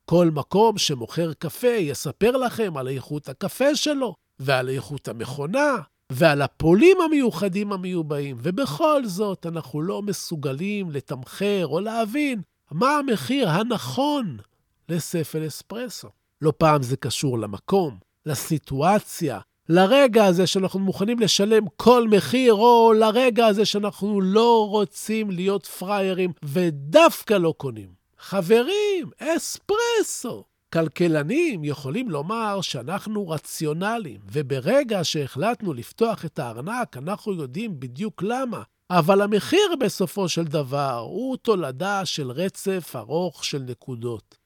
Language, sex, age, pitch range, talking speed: Hebrew, male, 50-69, 145-220 Hz, 110 wpm